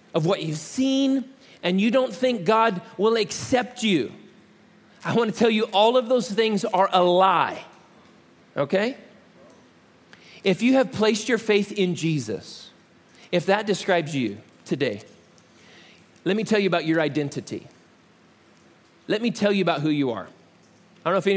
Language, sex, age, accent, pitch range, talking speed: English, male, 40-59, American, 185-235 Hz, 155 wpm